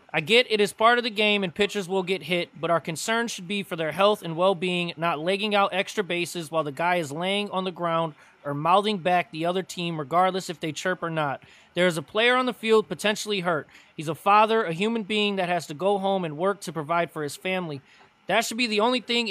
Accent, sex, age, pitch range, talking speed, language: American, male, 20-39, 170-205 Hz, 250 wpm, English